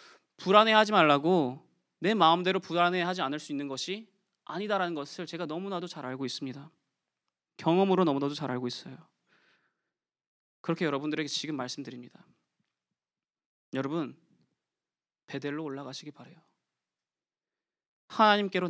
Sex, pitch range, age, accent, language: male, 135-190 Hz, 20-39, native, Korean